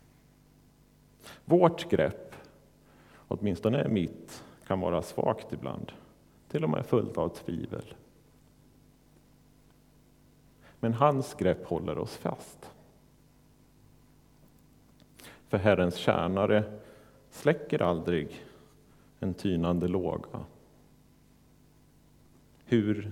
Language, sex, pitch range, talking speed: Swedish, male, 90-130 Hz, 75 wpm